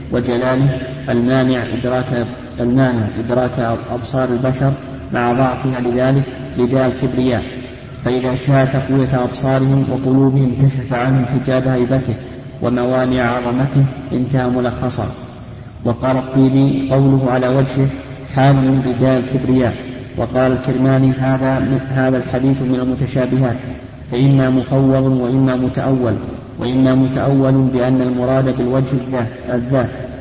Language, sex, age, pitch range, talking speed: Arabic, male, 30-49, 125-135 Hz, 100 wpm